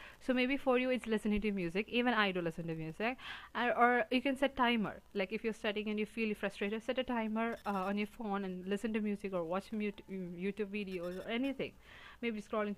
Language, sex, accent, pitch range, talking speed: English, female, Indian, 190-225 Hz, 225 wpm